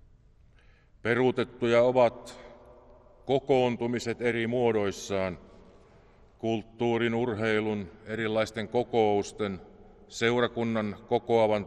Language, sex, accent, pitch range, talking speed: Finnish, male, native, 95-120 Hz, 55 wpm